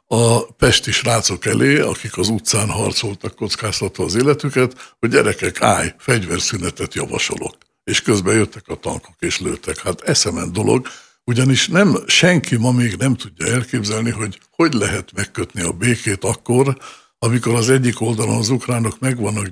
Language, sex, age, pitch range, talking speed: Hungarian, male, 60-79, 105-130 Hz, 150 wpm